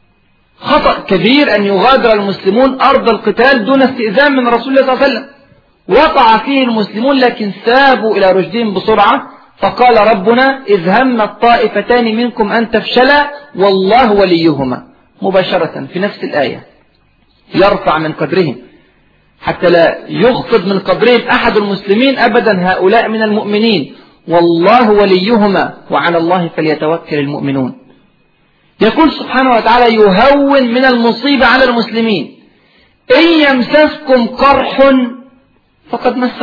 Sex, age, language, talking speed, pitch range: male, 40-59, Arabic, 115 wpm, 200-265 Hz